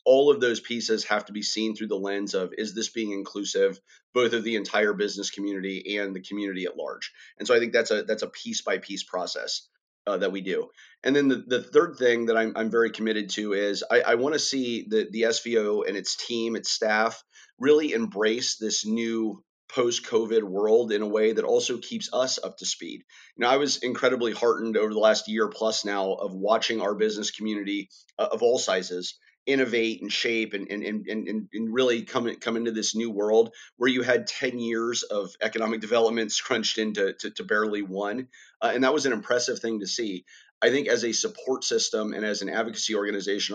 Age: 30-49